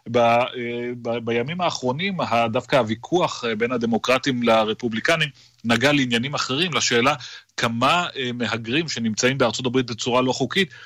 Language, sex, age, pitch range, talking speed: Hebrew, male, 30-49, 110-130 Hz, 115 wpm